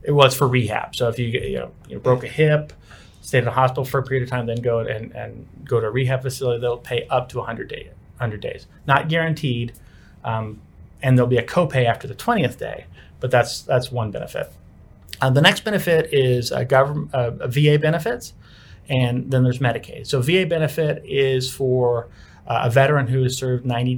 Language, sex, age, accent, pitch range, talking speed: English, male, 30-49, American, 115-135 Hz, 205 wpm